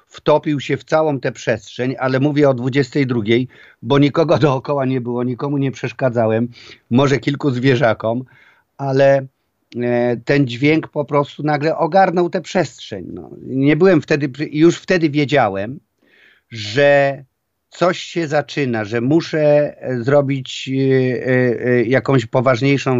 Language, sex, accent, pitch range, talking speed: Polish, male, native, 120-145 Hz, 115 wpm